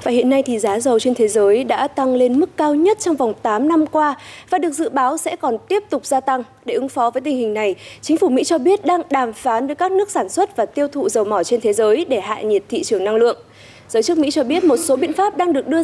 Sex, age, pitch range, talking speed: female, 20-39, 235-340 Hz, 290 wpm